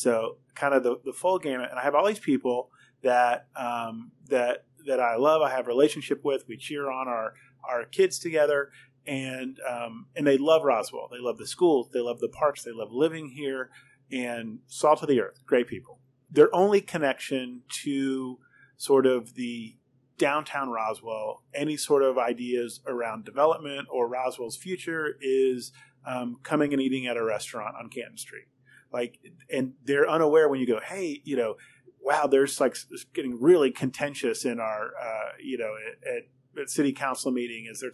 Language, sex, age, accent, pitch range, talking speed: English, male, 30-49, American, 125-155 Hz, 180 wpm